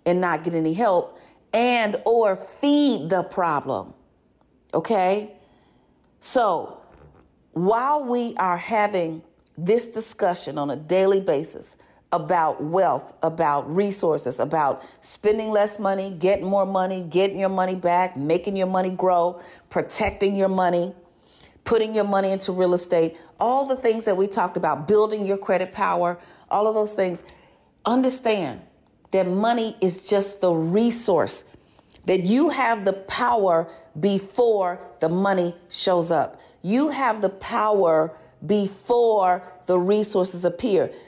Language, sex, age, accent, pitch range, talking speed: English, female, 40-59, American, 175-215 Hz, 130 wpm